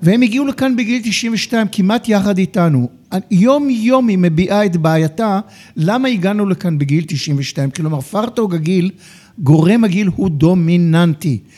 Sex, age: male, 60-79